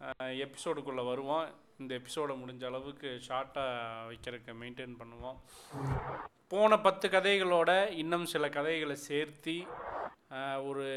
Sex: male